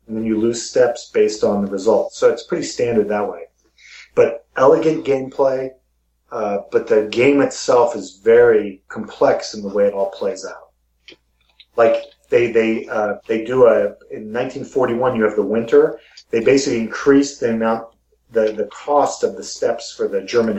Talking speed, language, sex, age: 175 wpm, English, male, 40-59